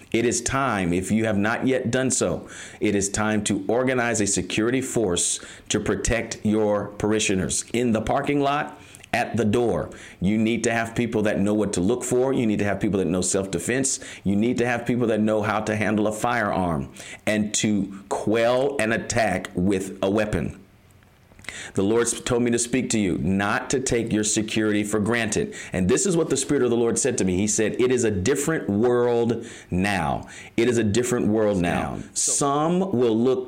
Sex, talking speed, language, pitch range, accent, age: male, 200 wpm, English, 100-120 Hz, American, 40-59